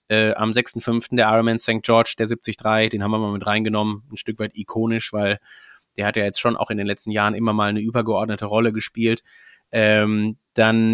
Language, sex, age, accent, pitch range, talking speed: German, male, 30-49, German, 100-115 Hz, 210 wpm